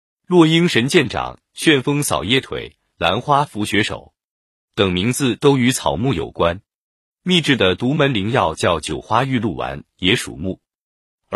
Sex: male